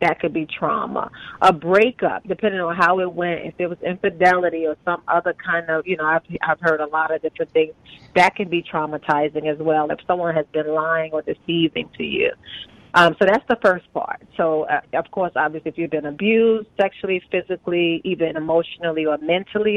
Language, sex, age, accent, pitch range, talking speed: English, female, 30-49, American, 165-195 Hz, 200 wpm